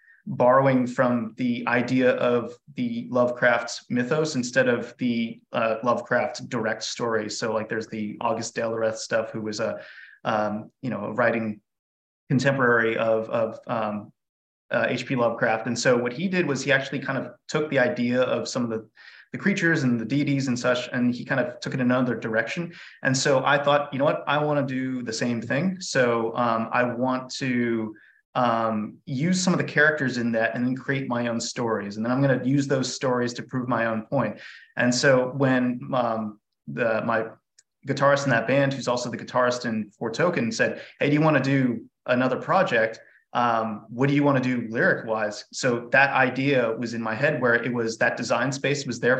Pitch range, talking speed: 115-140 Hz, 200 wpm